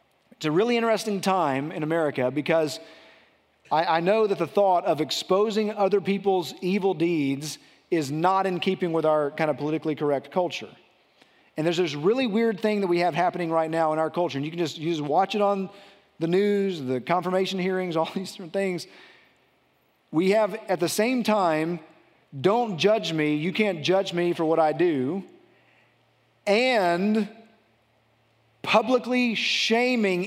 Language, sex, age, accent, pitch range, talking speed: English, male, 40-59, American, 165-205 Hz, 165 wpm